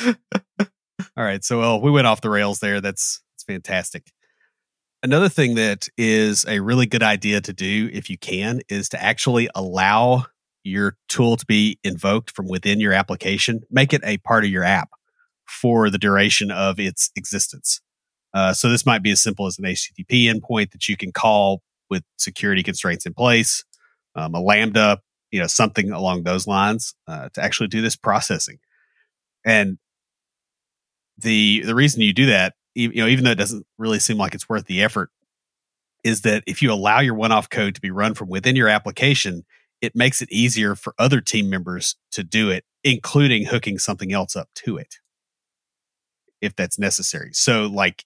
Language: English